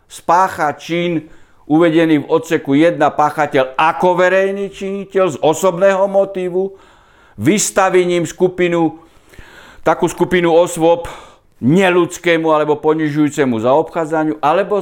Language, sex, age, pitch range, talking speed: Slovak, male, 60-79, 140-180 Hz, 95 wpm